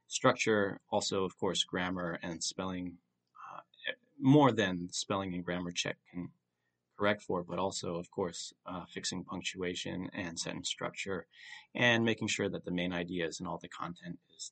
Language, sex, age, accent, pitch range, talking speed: English, male, 30-49, American, 90-110 Hz, 160 wpm